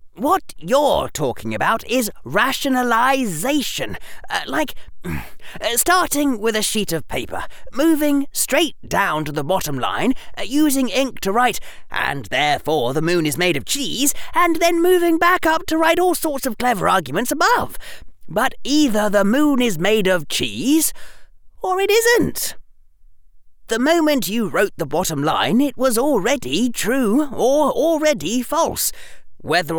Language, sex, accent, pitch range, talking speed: English, male, British, 195-285 Hz, 150 wpm